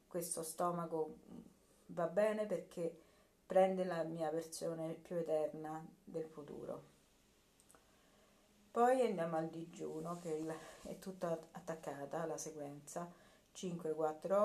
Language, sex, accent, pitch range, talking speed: Italian, female, native, 160-185 Hz, 105 wpm